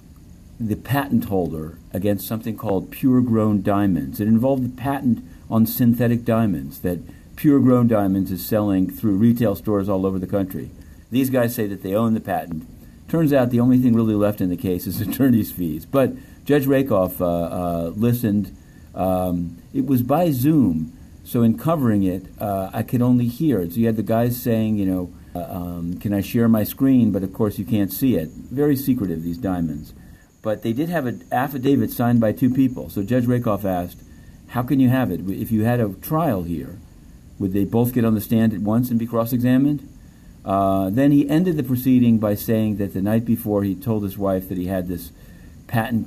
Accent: American